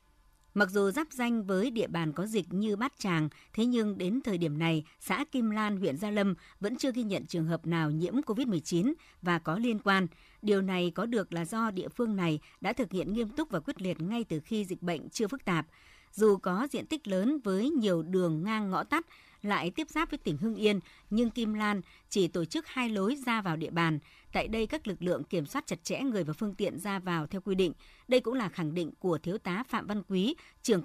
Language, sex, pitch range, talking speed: Vietnamese, male, 175-225 Hz, 235 wpm